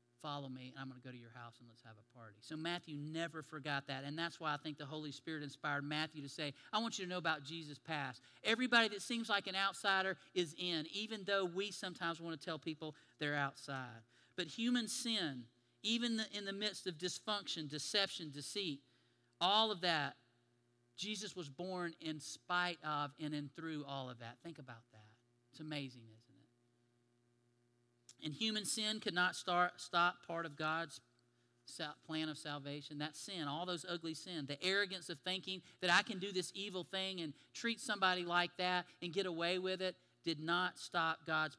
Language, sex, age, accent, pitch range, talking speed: English, male, 40-59, American, 140-185 Hz, 190 wpm